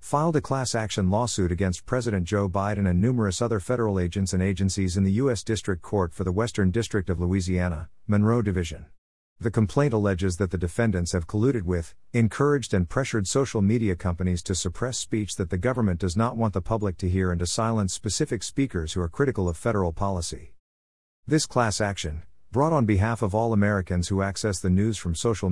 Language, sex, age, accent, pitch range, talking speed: English, male, 50-69, American, 90-115 Hz, 190 wpm